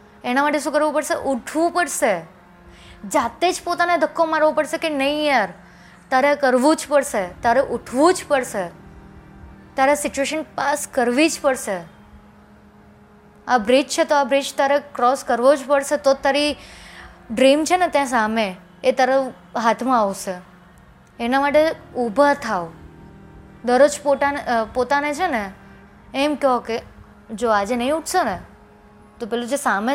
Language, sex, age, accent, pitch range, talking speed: Gujarati, female, 20-39, native, 225-285 Hz, 130 wpm